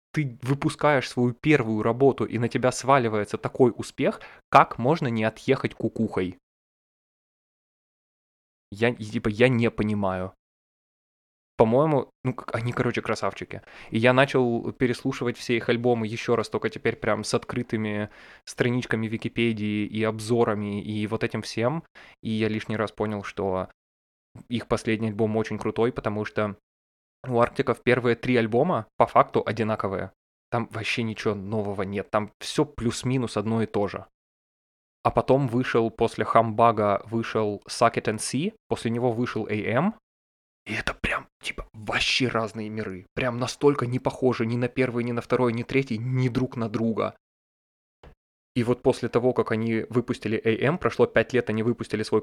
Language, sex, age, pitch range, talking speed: Russian, male, 20-39, 105-120 Hz, 150 wpm